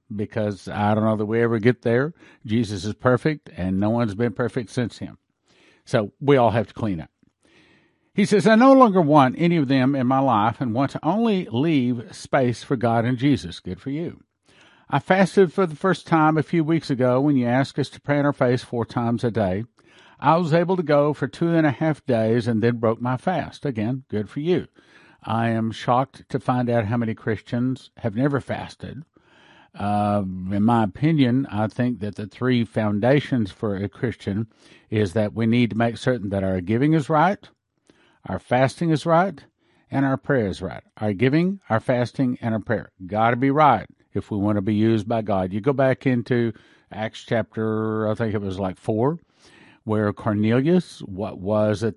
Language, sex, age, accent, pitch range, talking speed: English, male, 50-69, American, 110-140 Hz, 205 wpm